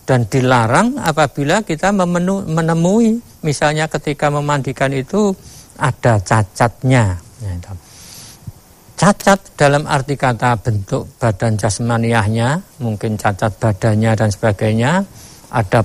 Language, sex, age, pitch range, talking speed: Indonesian, male, 50-69, 115-145 Hz, 90 wpm